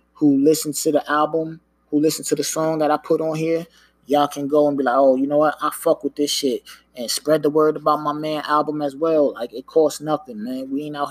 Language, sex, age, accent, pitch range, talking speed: English, male, 20-39, American, 140-155 Hz, 260 wpm